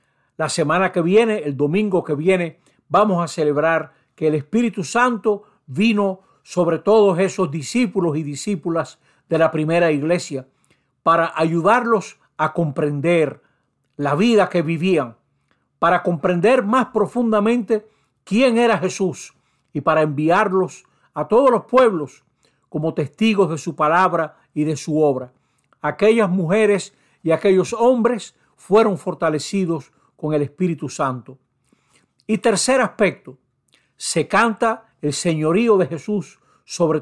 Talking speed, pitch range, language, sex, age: 125 wpm, 155-205 Hz, Spanish, male, 60-79